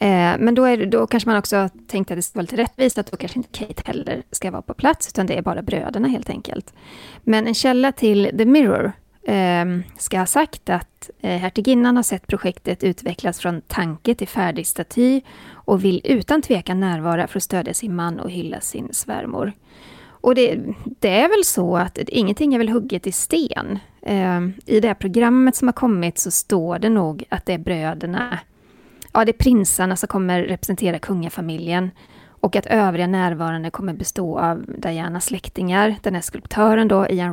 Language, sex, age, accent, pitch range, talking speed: Swedish, female, 30-49, native, 180-230 Hz, 185 wpm